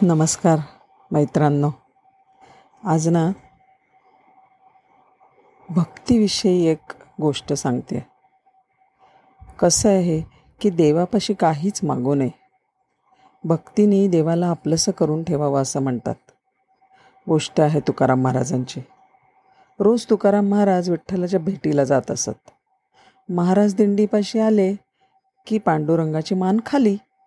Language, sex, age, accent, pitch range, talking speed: Marathi, female, 40-59, native, 155-220 Hz, 90 wpm